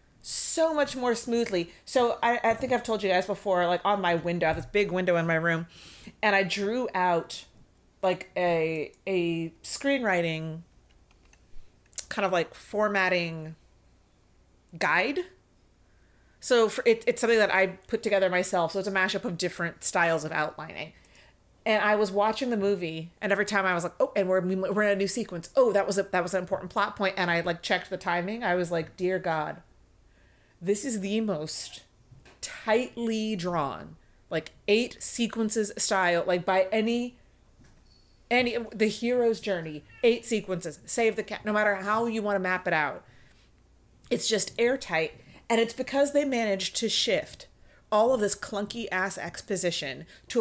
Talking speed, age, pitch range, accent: 175 wpm, 30-49, 175-225 Hz, American